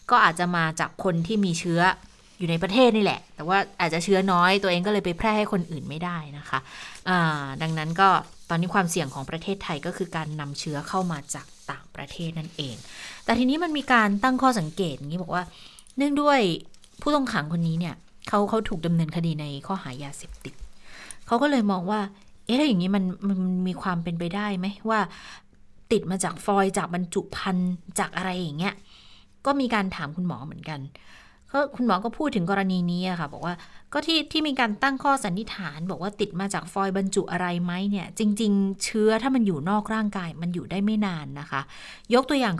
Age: 20-39